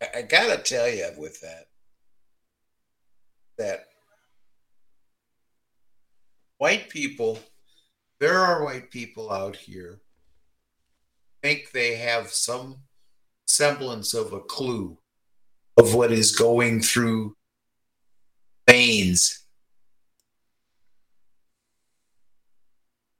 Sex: male